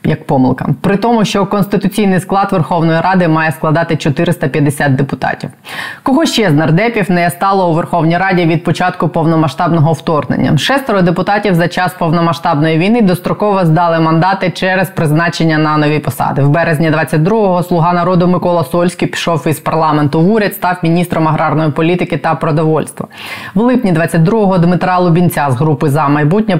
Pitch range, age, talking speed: 160-190 Hz, 20-39, 150 wpm